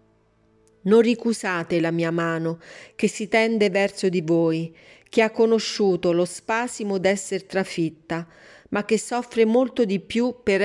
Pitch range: 170-215 Hz